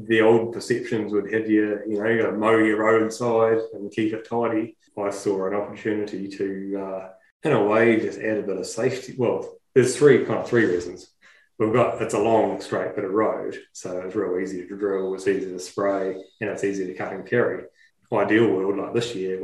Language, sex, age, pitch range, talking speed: English, male, 20-39, 95-110 Hz, 225 wpm